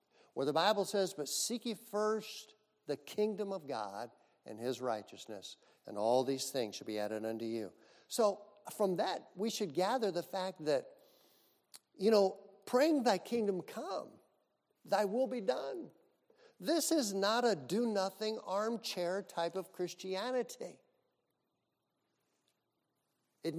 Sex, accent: male, American